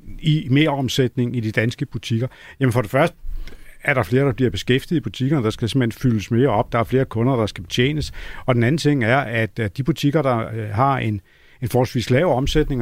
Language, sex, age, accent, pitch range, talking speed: Danish, male, 50-69, native, 120-145 Hz, 220 wpm